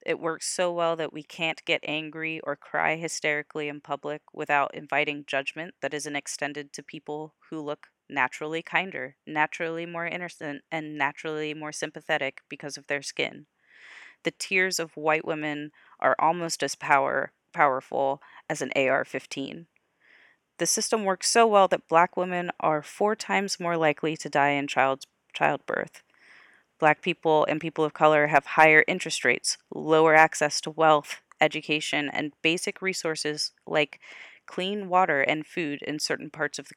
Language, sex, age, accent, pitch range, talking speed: English, female, 30-49, American, 150-170 Hz, 155 wpm